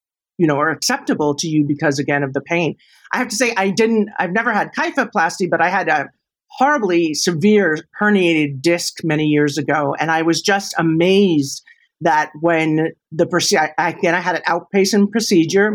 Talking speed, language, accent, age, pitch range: 175 wpm, English, American, 50-69, 160-220 Hz